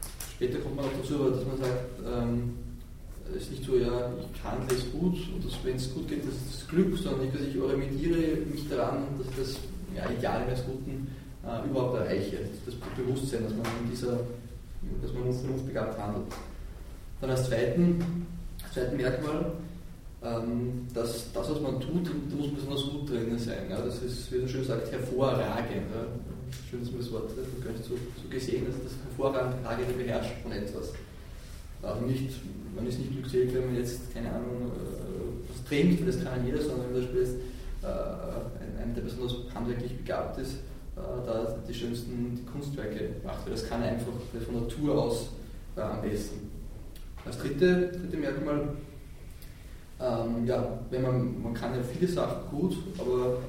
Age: 20-39